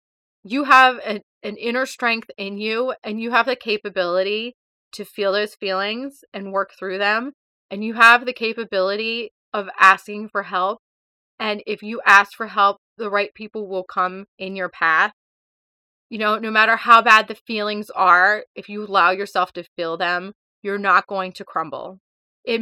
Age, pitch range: 30-49, 190-225 Hz